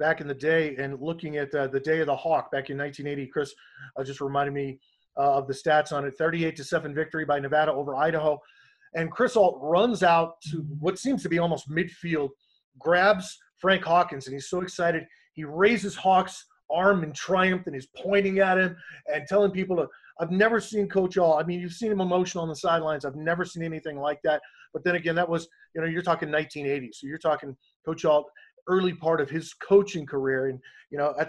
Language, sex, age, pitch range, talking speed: English, male, 30-49, 150-185 Hz, 220 wpm